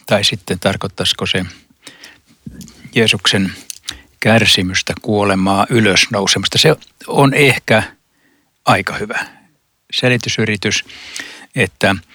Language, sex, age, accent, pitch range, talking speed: Finnish, male, 60-79, native, 95-115 Hz, 75 wpm